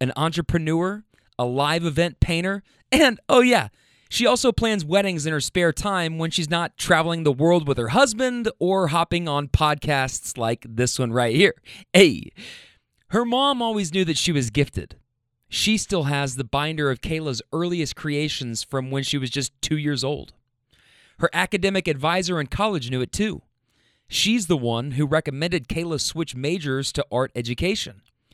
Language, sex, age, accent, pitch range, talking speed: English, male, 30-49, American, 135-185 Hz, 170 wpm